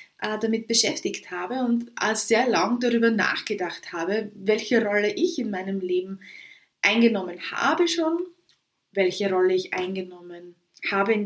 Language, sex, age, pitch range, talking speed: German, female, 20-39, 195-235 Hz, 130 wpm